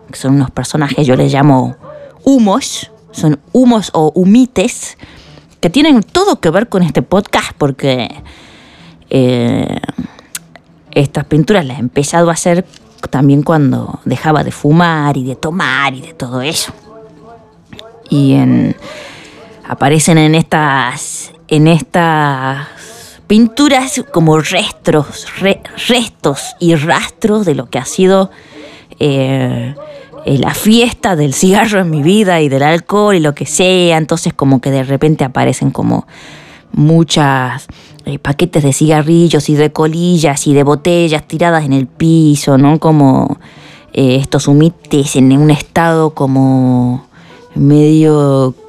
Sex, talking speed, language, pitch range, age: female, 130 wpm, Spanish, 140-195 Hz, 20-39